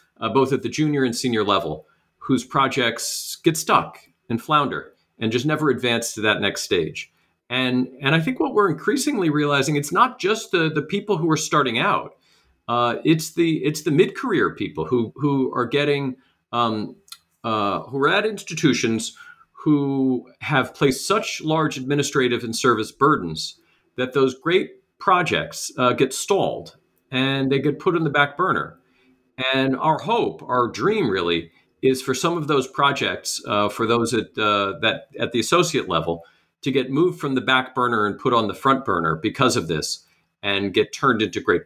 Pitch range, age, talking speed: 115-155 Hz, 40-59, 175 wpm